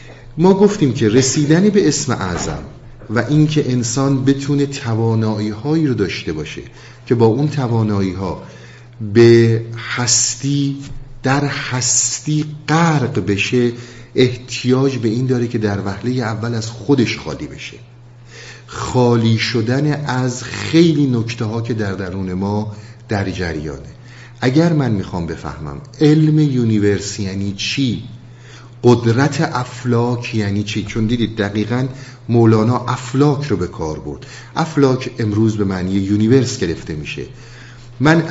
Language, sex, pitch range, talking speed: Persian, male, 105-135 Hz, 120 wpm